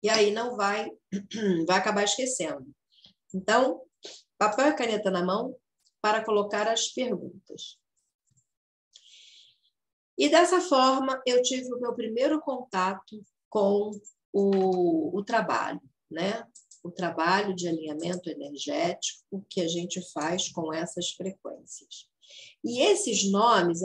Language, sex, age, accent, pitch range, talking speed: Portuguese, female, 40-59, Brazilian, 175-225 Hz, 120 wpm